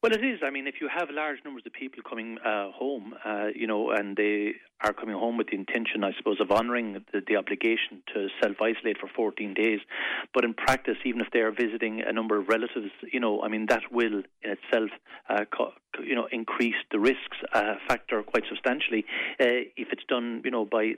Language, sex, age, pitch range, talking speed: English, male, 40-59, 115-130 Hz, 215 wpm